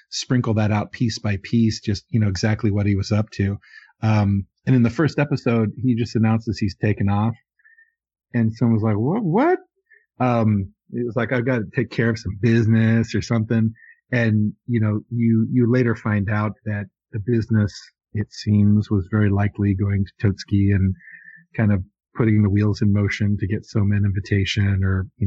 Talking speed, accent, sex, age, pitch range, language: 190 wpm, American, male, 40-59, 105-115 Hz, English